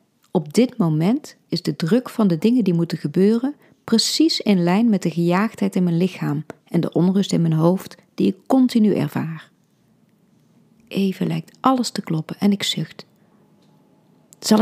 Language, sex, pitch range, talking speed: Dutch, female, 165-205 Hz, 165 wpm